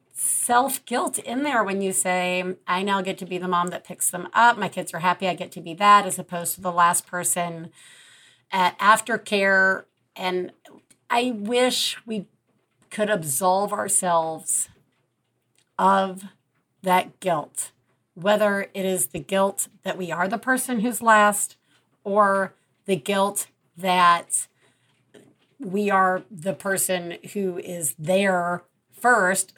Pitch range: 170-215 Hz